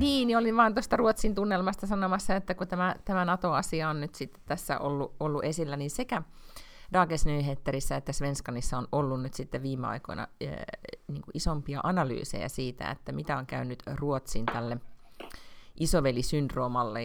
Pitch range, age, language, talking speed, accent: 125-165 Hz, 30-49, Finnish, 150 wpm, native